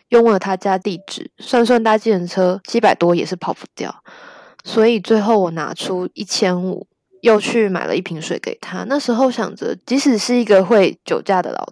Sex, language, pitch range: female, Chinese, 180-225 Hz